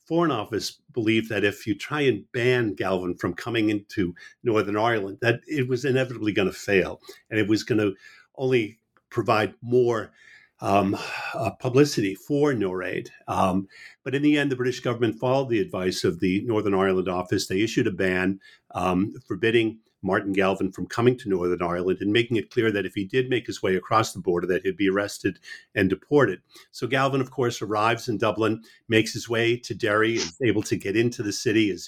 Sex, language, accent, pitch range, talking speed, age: male, English, American, 100-125 Hz, 195 wpm, 50-69